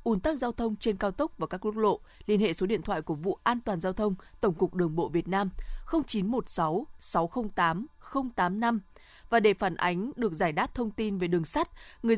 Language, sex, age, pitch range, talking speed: Vietnamese, female, 20-39, 185-225 Hz, 210 wpm